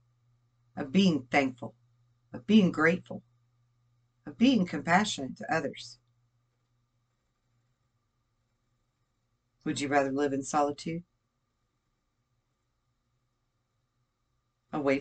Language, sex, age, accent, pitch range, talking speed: English, female, 40-59, American, 120-145 Hz, 70 wpm